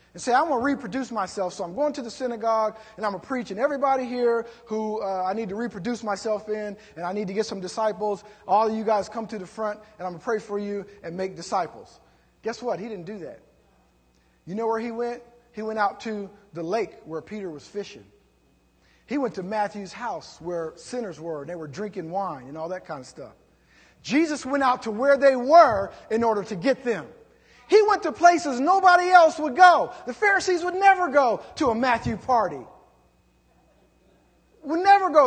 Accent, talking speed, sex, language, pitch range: American, 215 wpm, male, English, 195-265 Hz